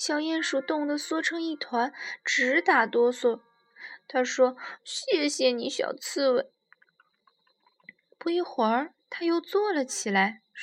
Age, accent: 20-39, native